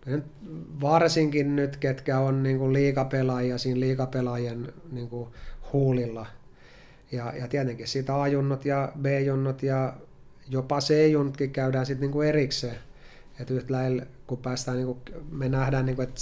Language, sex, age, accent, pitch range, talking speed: Finnish, male, 30-49, native, 120-135 Hz, 120 wpm